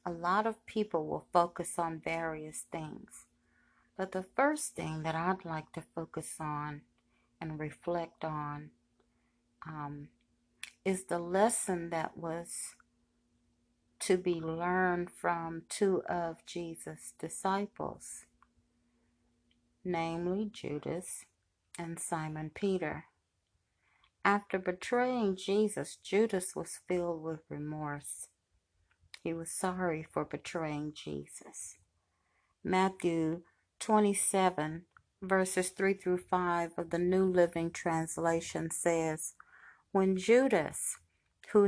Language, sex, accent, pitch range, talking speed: English, female, American, 155-190 Hz, 100 wpm